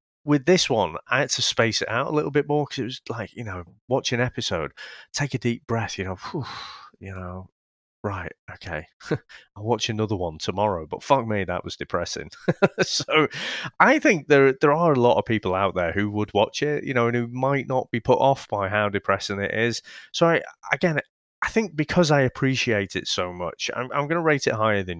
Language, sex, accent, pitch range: English, male, British, 95-140 Hz